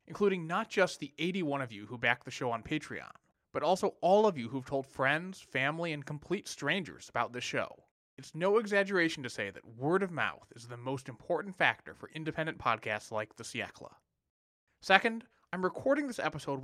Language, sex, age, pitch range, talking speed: English, male, 20-39, 125-170 Hz, 190 wpm